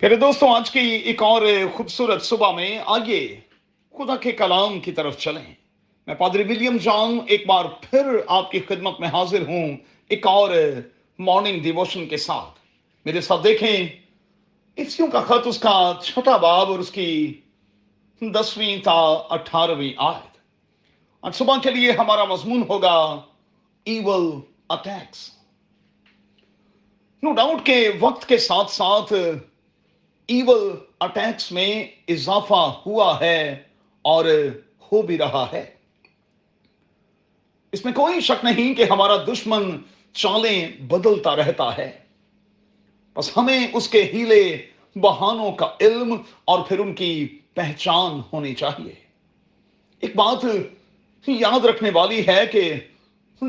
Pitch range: 175-230 Hz